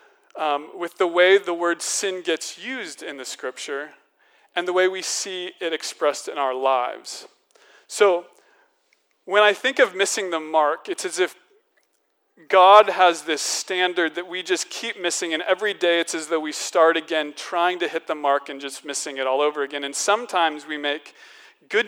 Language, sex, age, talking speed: English, male, 40-59, 185 wpm